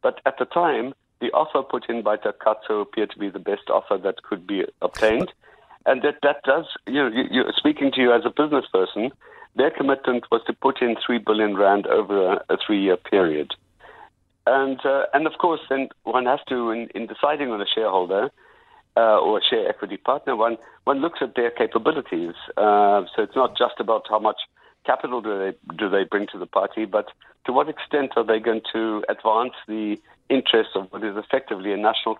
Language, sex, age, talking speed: English, male, 60-79, 205 wpm